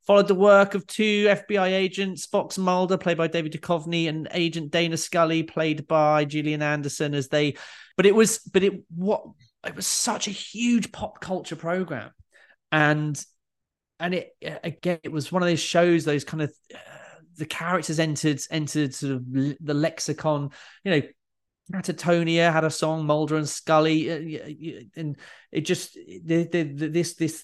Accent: British